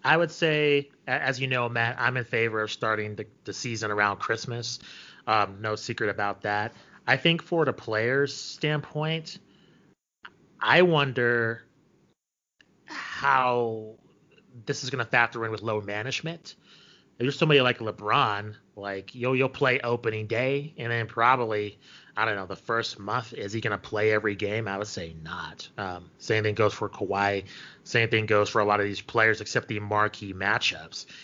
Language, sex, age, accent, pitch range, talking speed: English, male, 30-49, American, 105-135 Hz, 170 wpm